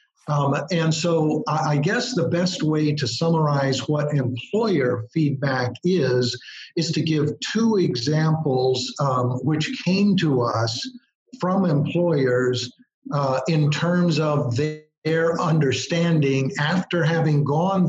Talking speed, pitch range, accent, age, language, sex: 115 wpm, 135-170 Hz, American, 50-69, English, male